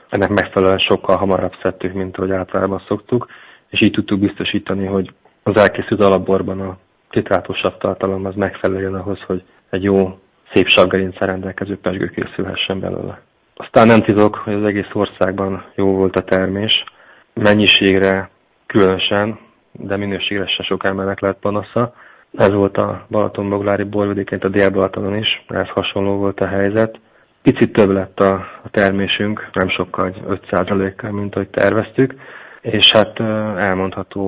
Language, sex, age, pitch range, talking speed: Hungarian, male, 20-39, 95-100 Hz, 140 wpm